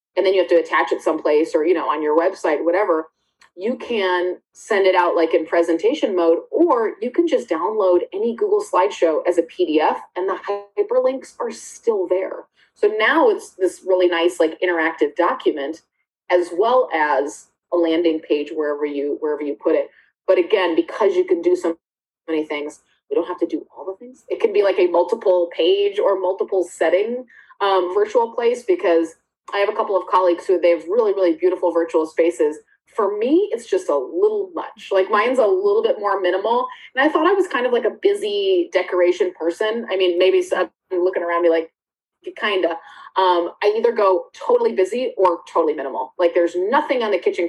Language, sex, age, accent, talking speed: English, female, 30-49, American, 200 wpm